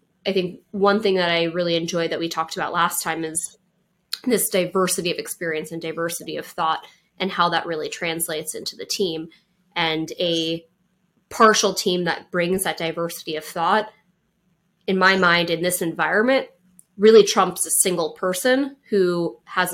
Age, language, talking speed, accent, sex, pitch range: 20-39, English, 165 wpm, American, female, 165-195 Hz